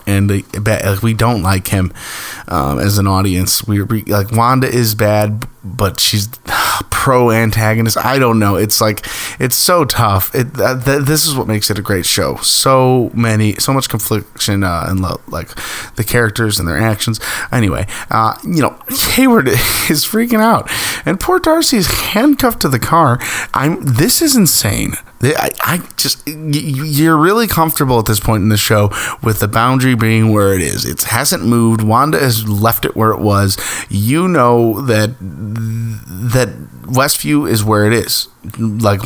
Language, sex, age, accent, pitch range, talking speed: English, male, 20-39, American, 105-125 Hz, 165 wpm